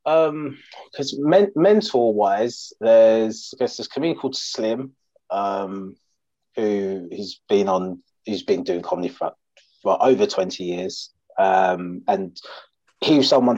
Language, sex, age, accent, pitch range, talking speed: English, male, 30-49, British, 95-130 Hz, 140 wpm